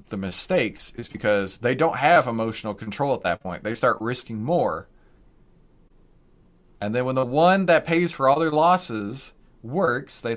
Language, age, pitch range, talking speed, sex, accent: English, 30-49, 100-120 Hz, 170 wpm, male, American